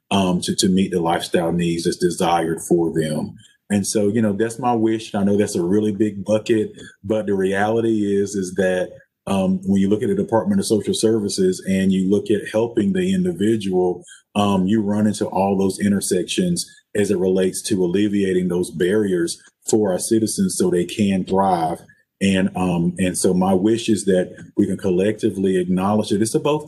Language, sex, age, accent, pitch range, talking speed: English, male, 30-49, American, 95-110 Hz, 190 wpm